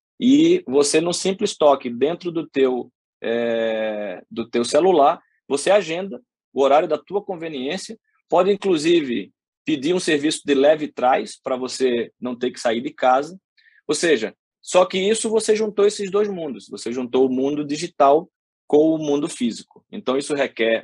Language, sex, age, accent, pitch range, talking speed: Portuguese, male, 20-39, Brazilian, 115-165 Hz, 165 wpm